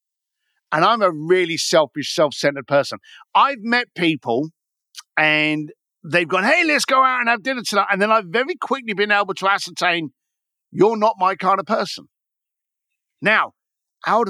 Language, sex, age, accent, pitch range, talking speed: English, male, 50-69, British, 155-235 Hz, 160 wpm